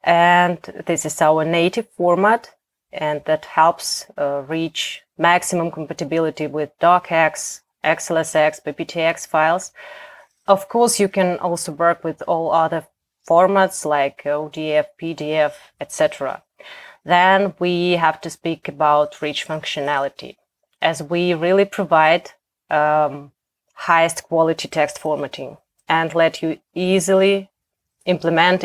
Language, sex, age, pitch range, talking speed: English, female, 30-49, 155-180 Hz, 115 wpm